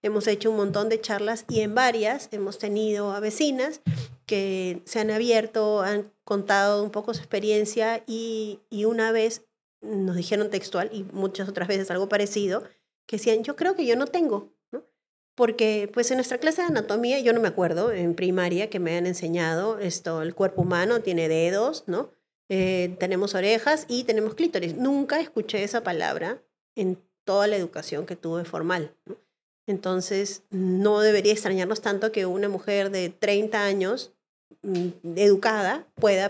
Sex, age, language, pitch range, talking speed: female, 30-49, Spanish, 170-215 Hz, 165 wpm